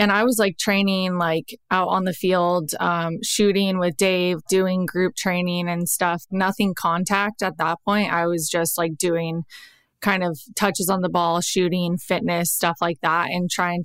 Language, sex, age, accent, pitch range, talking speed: English, female, 20-39, American, 175-195 Hz, 180 wpm